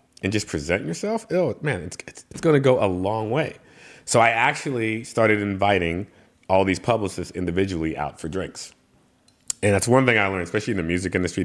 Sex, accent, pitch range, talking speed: male, American, 95-145 Hz, 195 wpm